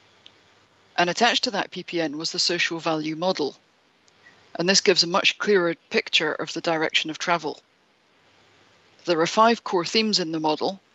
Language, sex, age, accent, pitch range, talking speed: English, female, 40-59, British, 160-190 Hz, 165 wpm